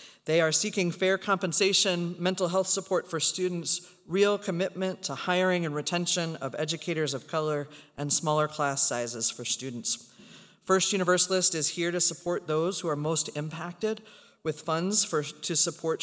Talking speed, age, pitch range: 155 wpm, 40-59, 145-185 Hz